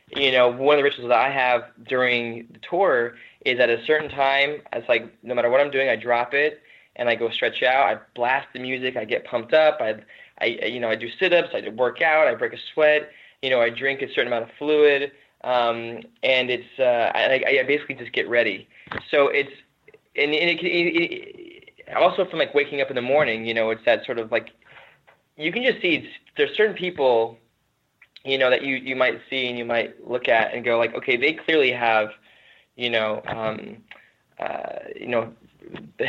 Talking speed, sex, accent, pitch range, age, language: 220 wpm, male, American, 120-150 Hz, 20-39, English